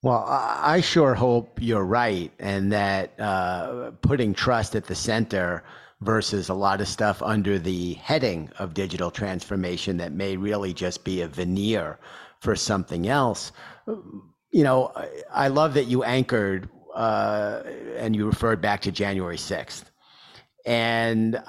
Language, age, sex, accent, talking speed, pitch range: English, 50-69, male, American, 140 wpm, 100-125 Hz